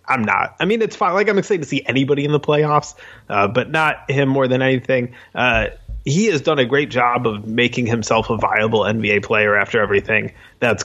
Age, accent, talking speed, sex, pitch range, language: 30-49, American, 215 wpm, male, 115-140 Hz, English